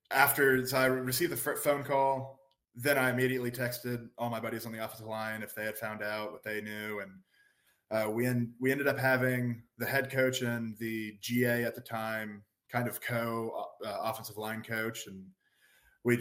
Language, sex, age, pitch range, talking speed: English, male, 20-39, 110-125 Hz, 185 wpm